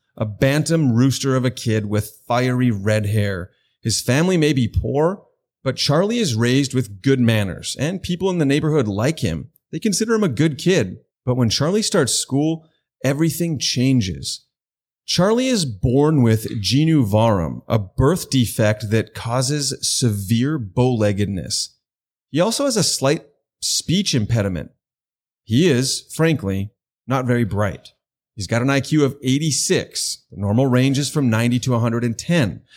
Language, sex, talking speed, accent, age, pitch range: English, male, 150 wpm, American, 30-49, 115-150 Hz